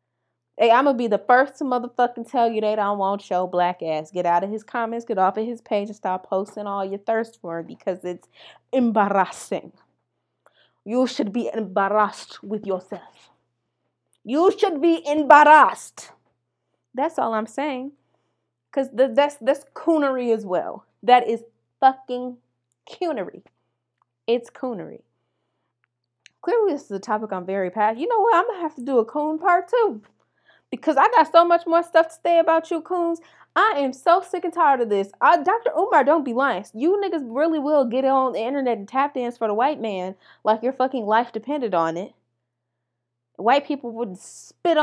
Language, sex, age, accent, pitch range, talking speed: English, female, 20-39, American, 195-285 Hz, 185 wpm